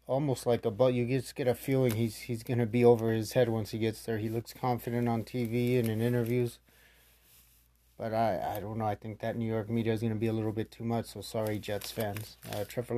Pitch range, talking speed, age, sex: 110-125 Hz, 250 wpm, 30-49, male